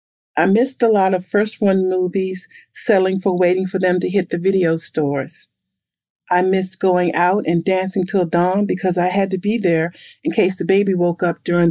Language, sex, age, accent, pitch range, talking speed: English, female, 40-59, American, 175-200 Hz, 195 wpm